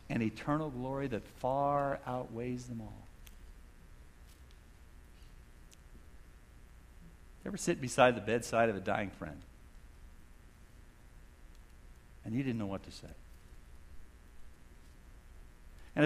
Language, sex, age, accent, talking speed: English, male, 60-79, American, 95 wpm